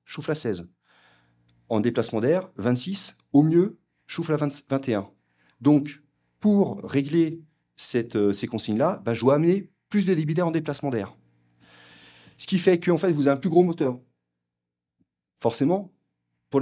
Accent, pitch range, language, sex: French, 100-145 Hz, French, male